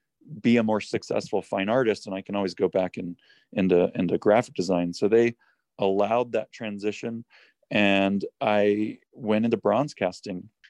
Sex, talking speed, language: male, 155 wpm, English